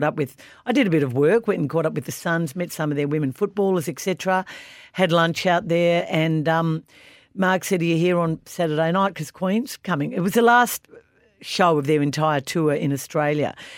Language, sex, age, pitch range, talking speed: English, female, 50-69, 140-180 Hz, 220 wpm